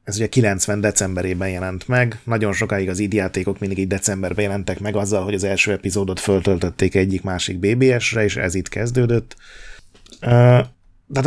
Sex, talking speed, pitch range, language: male, 155 wpm, 95-115 Hz, Hungarian